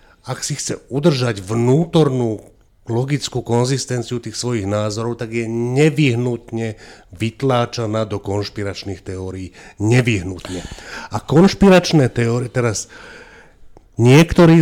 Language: Slovak